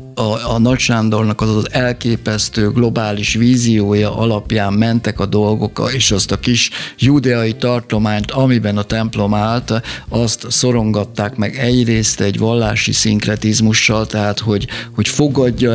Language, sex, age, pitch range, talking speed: Hungarian, male, 50-69, 105-125 Hz, 125 wpm